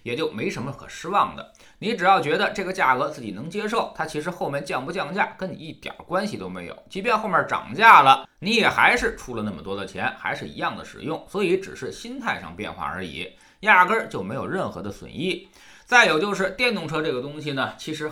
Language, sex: Chinese, male